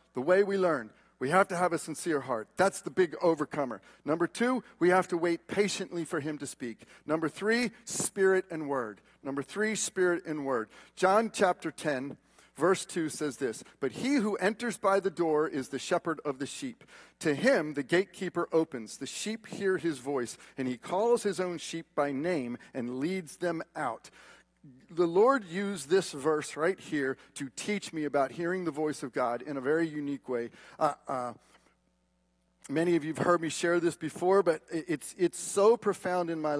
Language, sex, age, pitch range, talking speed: English, male, 40-59, 145-195 Hz, 190 wpm